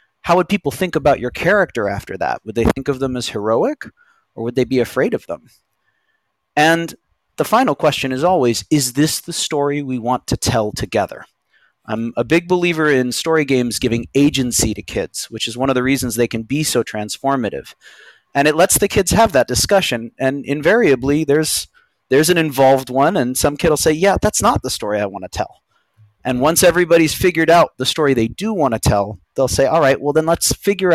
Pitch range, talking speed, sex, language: 120-155 Hz, 210 wpm, male, English